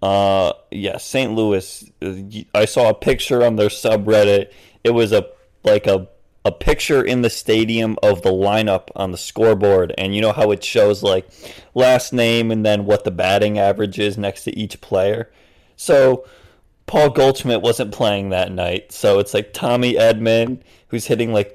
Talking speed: 175 wpm